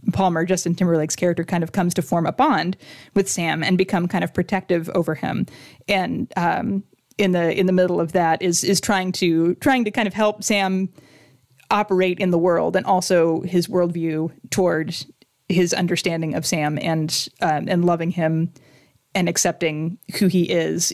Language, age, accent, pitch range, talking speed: English, 20-39, American, 170-195 Hz, 180 wpm